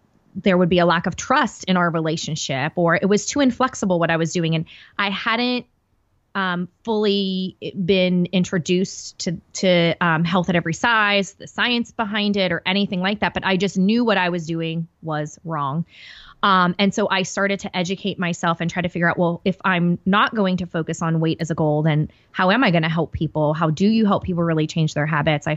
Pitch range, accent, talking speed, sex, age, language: 170-200 Hz, American, 220 wpm, female, 20-39, English